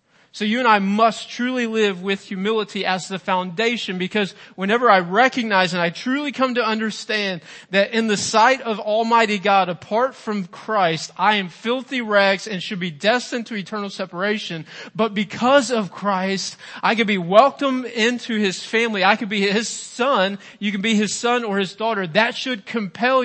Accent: American